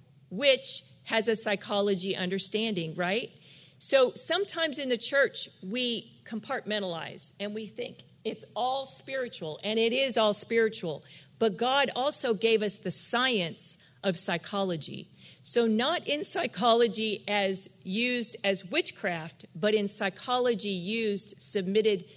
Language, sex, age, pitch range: English, female, 40-59, 190-250 Hz